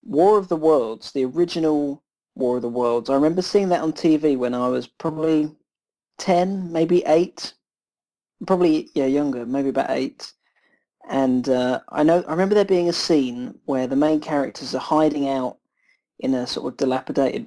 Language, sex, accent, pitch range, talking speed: English, male, British, 130-155 Hz, 175 wpm